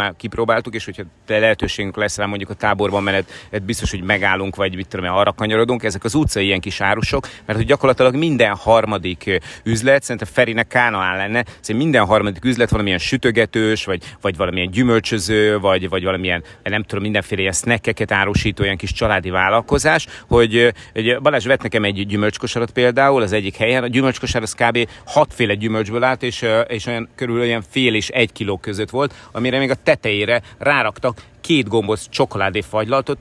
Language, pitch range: Hungarian, 105-130 Hz